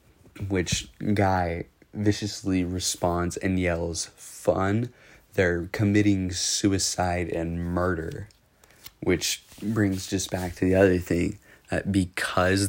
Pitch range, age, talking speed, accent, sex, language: 85-100 Hz, 20-39, 105 wpm, American, male, English